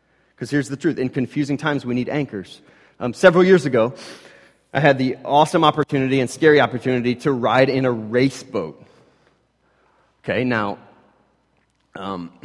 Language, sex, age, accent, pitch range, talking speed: English, male, 30-49, American, 120-150 Hz, 150 wpm